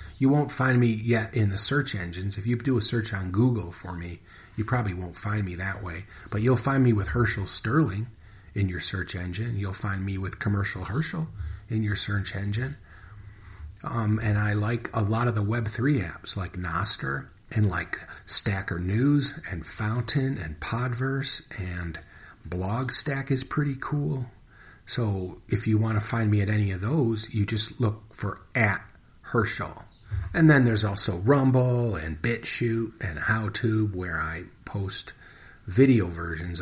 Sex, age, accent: male, 40-59, American